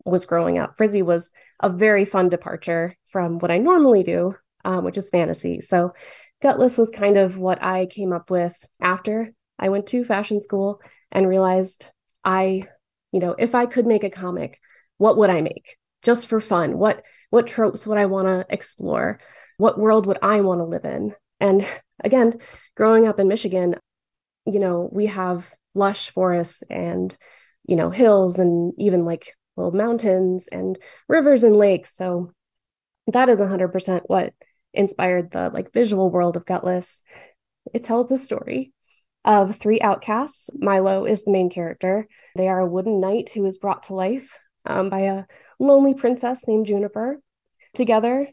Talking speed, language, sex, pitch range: 165 wpm, English, female, 185-230 Hz